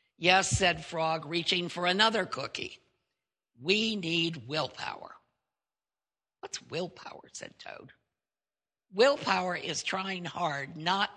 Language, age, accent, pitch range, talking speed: English, 60-79, American, 150-195 Hz, 100 wpm